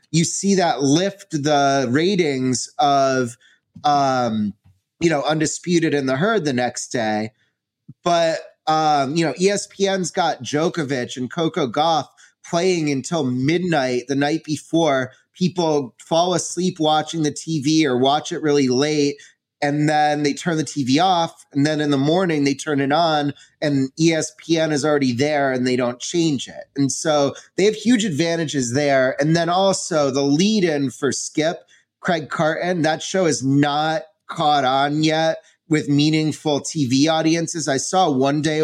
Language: English